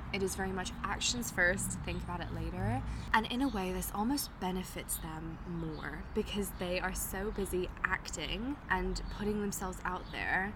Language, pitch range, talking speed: English, 180-215 Hz, 170 wpm